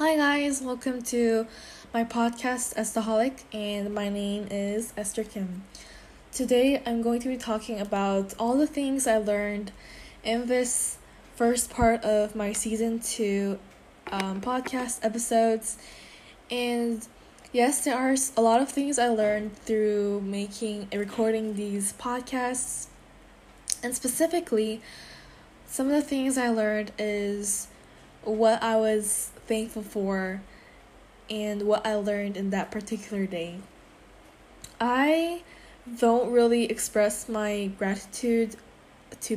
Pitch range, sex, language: 210-245 Hz, female, Korean